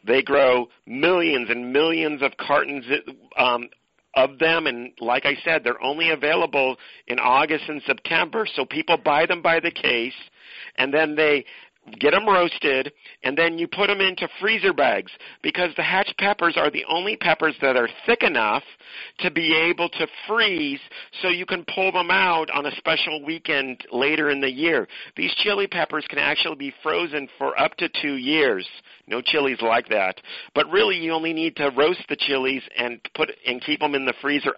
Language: English